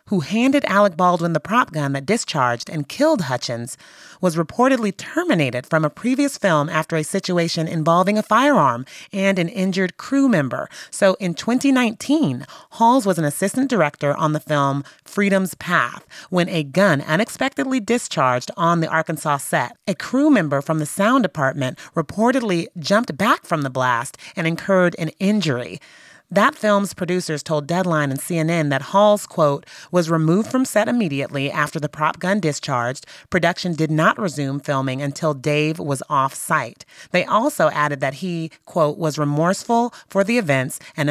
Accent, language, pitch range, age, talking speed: American, English, 150-200 Hz, 30-49, 160 wpm